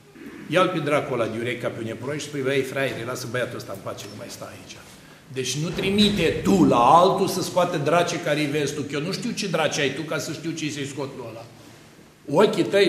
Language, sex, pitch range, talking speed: Romanian, male, 135-195 Hz, 240 wpm